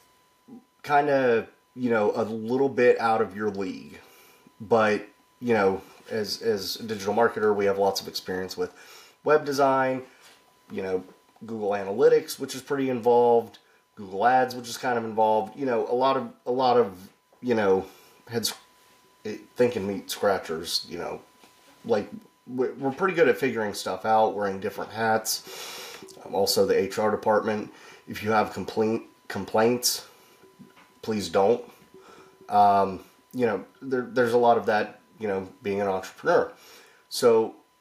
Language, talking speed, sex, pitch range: English, 150 wpm, male, 105-135 Hz